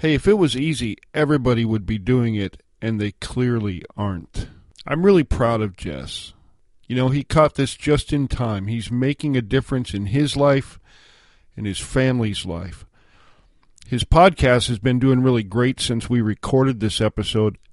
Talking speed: 170 wpm